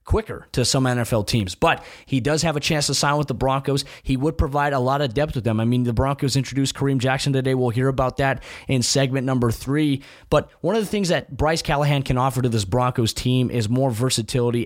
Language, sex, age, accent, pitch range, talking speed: English, male, 20-39, American, 120-145 Hz, 240 wpm